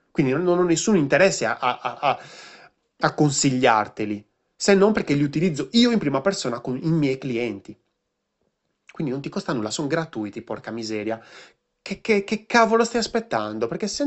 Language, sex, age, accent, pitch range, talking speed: Italian, male, 30-49, native, 125-185 Hz, 160 wpm